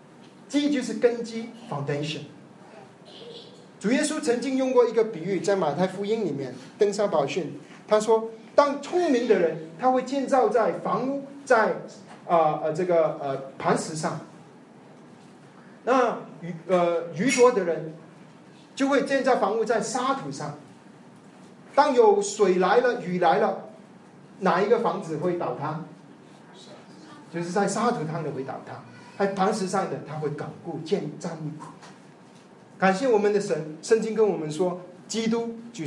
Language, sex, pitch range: Chinese, male, 170-255 Hz